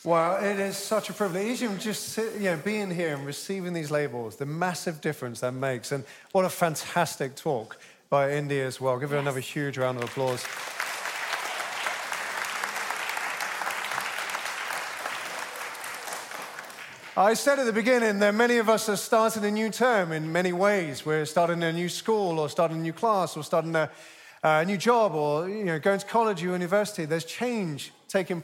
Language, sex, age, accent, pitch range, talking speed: English, male, 30-49, British, 160-205 Hz, 175 wpm